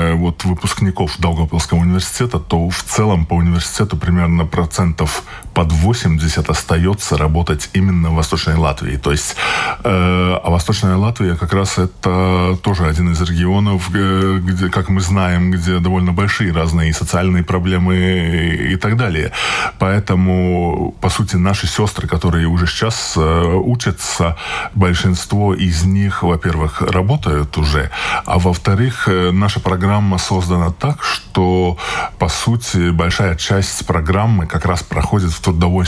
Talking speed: 135 wpm